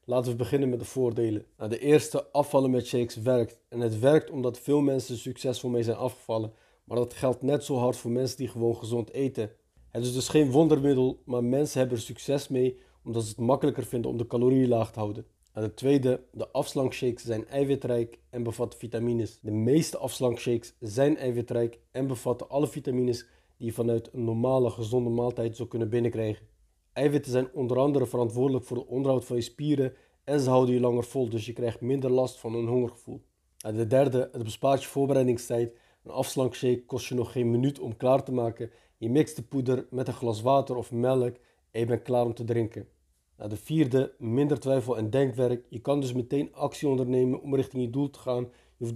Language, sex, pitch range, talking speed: Dutch, male, 120-135 Hz, 205 wpm